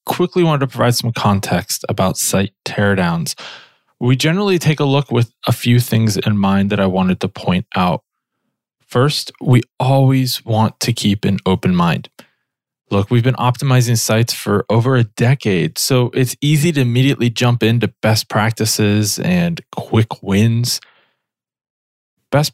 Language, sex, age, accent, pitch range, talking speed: English, male, 20-39, American, 110-145 Hz, 150 wpm